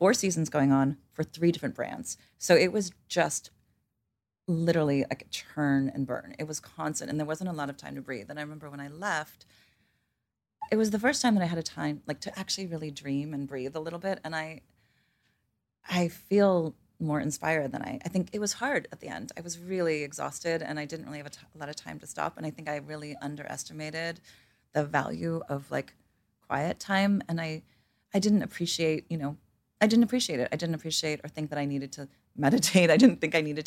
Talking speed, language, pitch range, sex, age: 225 wpm, English, 145-170 Hz, female, 30-49